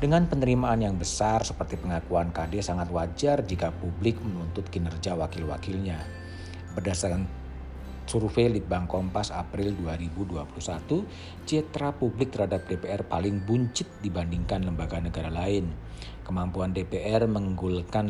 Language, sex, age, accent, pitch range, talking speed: Indonesian, male, 50-69, native, 85-105 Hz, 115 wpm